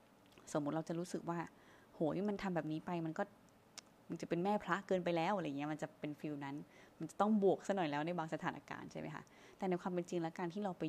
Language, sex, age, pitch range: Thai, female, 20-39, 150-180 Hz